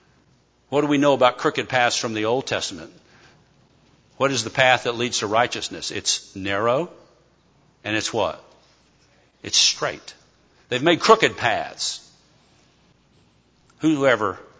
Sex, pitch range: male, 105-145 Hz